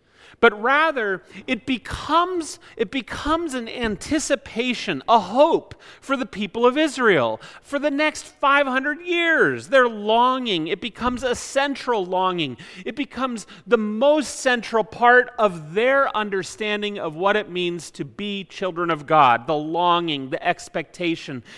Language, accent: English, American